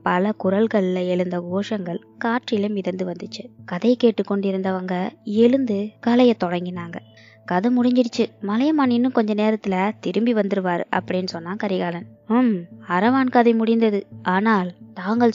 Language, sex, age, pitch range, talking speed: Tamil, female, 20-39, 185-230 Hz, 115 wpm